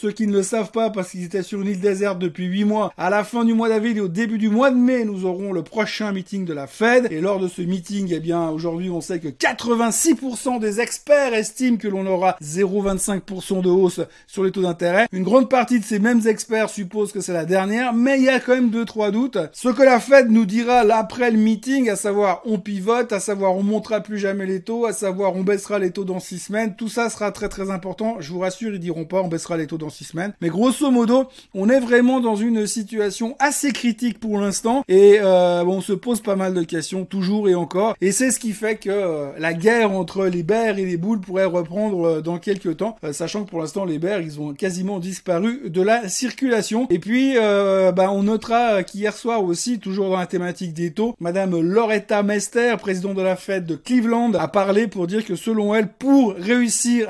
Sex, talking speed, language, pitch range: male, 235 wpm, French, 185-230 Hz